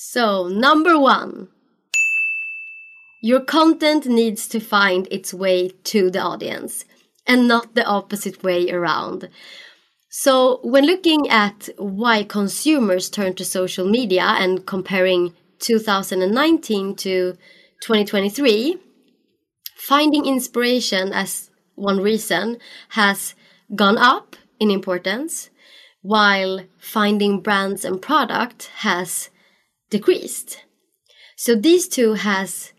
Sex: female